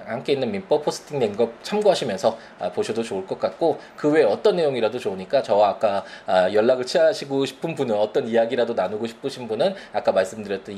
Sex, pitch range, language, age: male, 100-155 Hz, Korean, 20-39